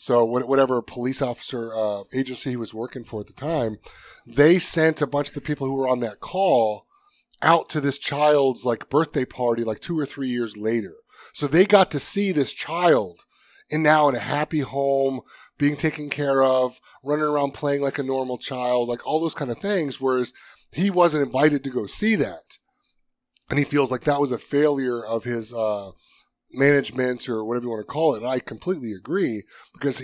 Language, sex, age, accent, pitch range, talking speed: English, male, 30-49, American, 120-150 Hz, 200 wpm